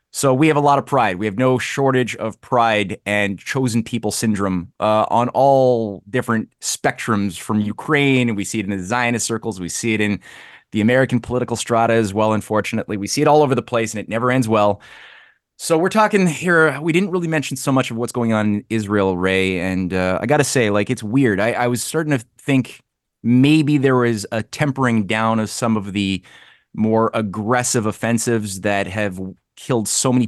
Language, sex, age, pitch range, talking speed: English, male, 20-39, 100-125 Hz, 210 wpm